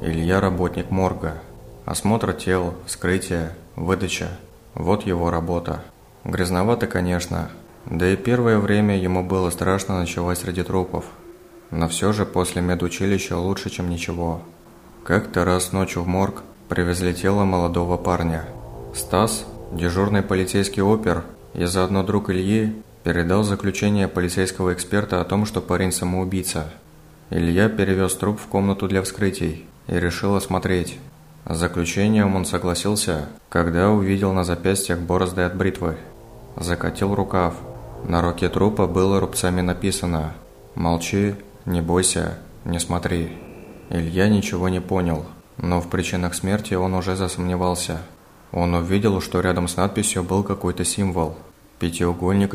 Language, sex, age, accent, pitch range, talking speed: Russian, male, 20-39, native, 85-95 Hz, 125 wpm